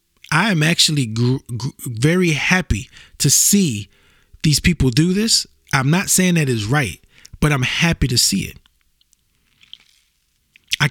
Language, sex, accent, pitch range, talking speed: English, male, American, 110-155 Hz, 130 wpm